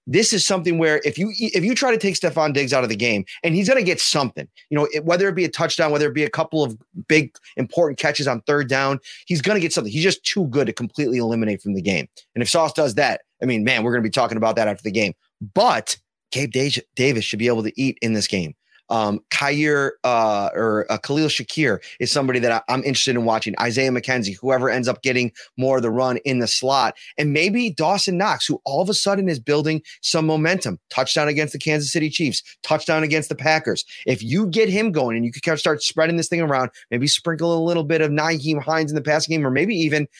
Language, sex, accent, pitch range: English, male, American, 115-155 Hz